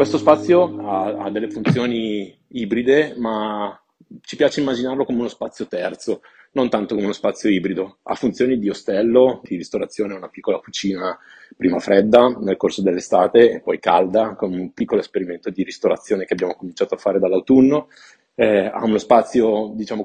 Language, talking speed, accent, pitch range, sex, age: Italian, 165 wpm, native, 100-120 Hz, male, 30-49